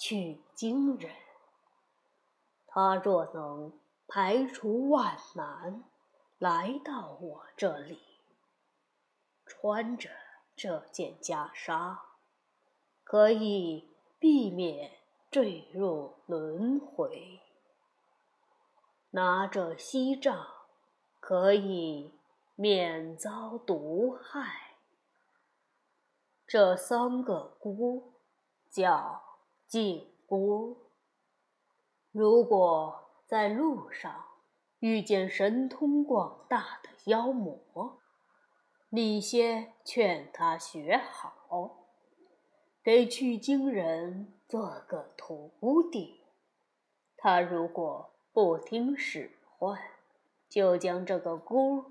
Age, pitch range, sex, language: 20-39, 185-275 Hz, female, Chinese